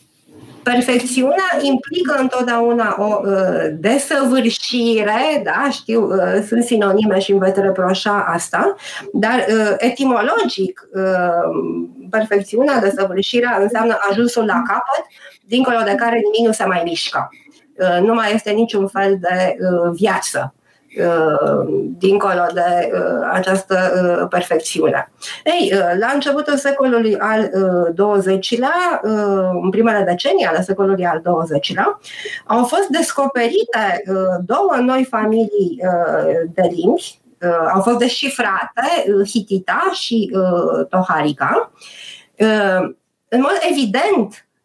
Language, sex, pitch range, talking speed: Romanian, female, 190-250 Hz, 105 wpm